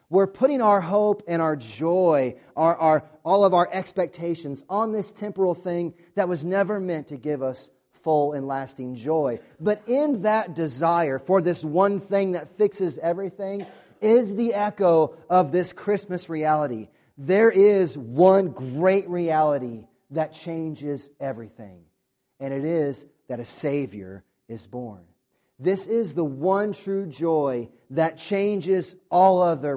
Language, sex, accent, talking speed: English, male, American, 145 wpm